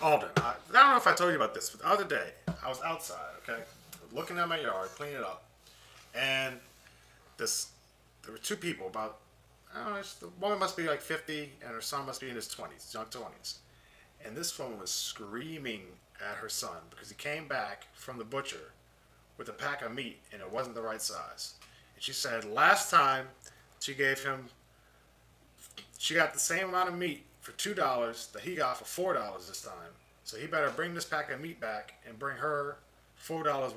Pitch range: 120-175 Hz